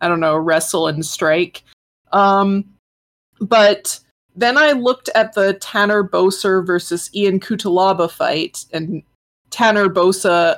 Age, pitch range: 20-39, 175-230 Hz